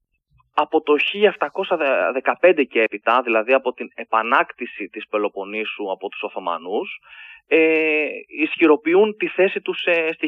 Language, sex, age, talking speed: Greek, male, 20-39, 125 wpm